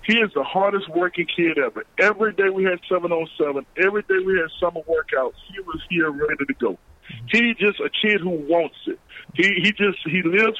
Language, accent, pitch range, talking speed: English, American, 175-210 Hz, 210 wpm